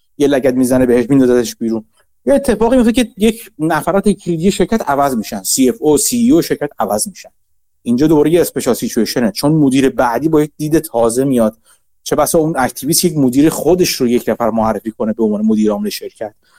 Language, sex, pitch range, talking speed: Persian, male, 120-195 Hz, 195 wpm